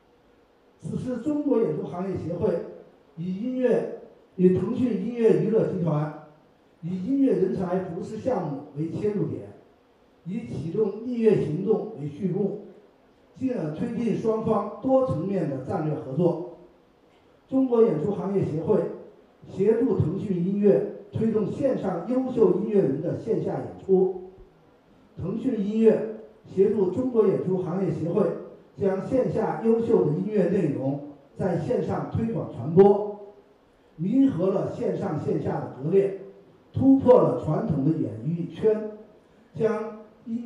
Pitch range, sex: 170-220 Hz, male